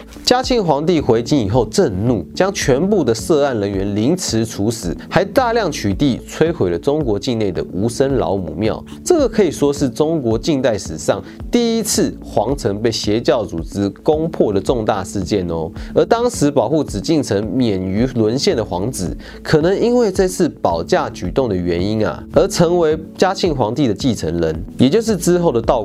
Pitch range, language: 100-155 Hz, Chinese